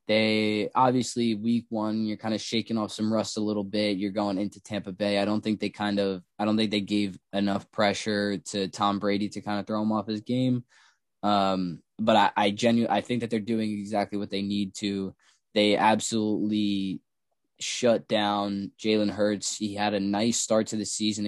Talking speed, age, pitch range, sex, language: 205 wpm, 10-29, 100-110 Hz, male, English